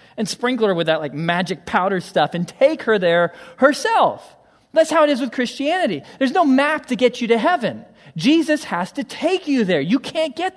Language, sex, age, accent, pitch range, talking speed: English, male, 40-59, American, 160-225 Hz, 210 wpm